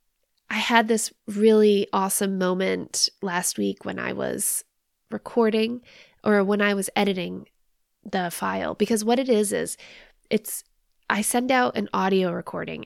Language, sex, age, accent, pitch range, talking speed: English, female, 20-39, American, 185-220 Hz, 145 wpm